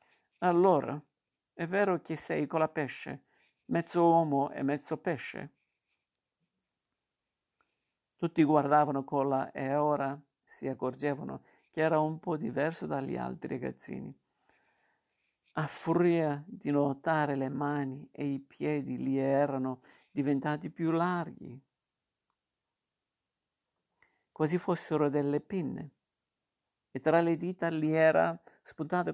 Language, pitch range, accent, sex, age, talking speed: Italian, 135-165 Hz, native, male, 50-69, 110 wpm